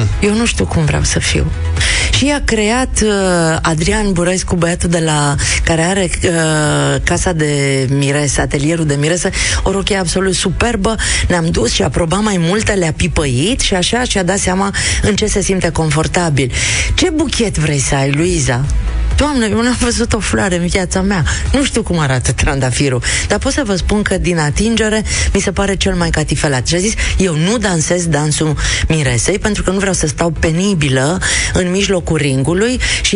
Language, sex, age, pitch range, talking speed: Romanian, female, 30-49, 150-215 Hz, 180 wpm